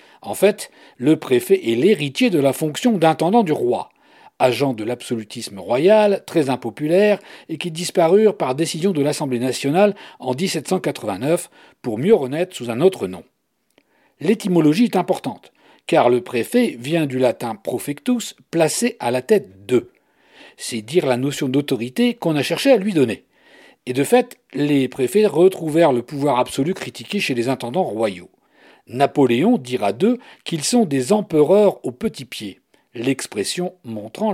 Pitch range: 125-190 Hz